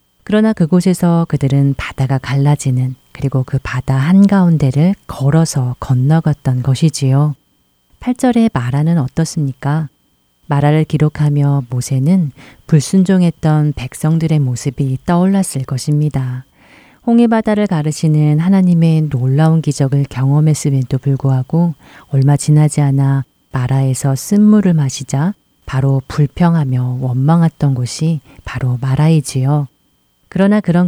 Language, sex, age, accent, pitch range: Korean, female, 40-59, native, 135-165 Hz